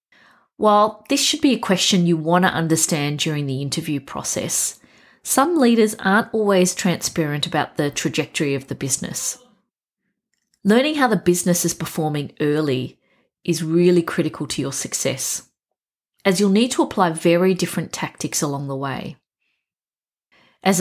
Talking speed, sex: 145 wpm, female